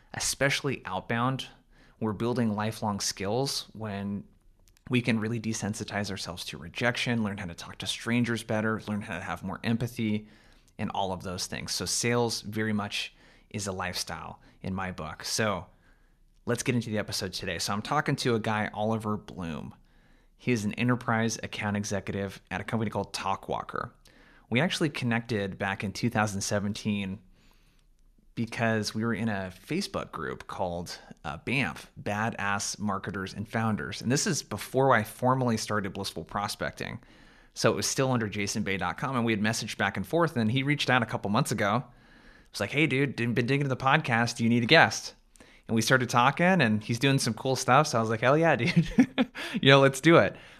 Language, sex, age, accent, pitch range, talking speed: English, male, 20-39, American, 100-125 Hz, 185 wpm